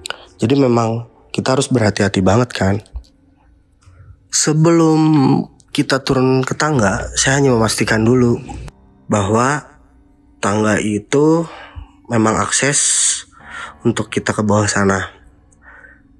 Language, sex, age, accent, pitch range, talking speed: Indonesian, male, 20-39, native, 105-135 Hz, 95 wpm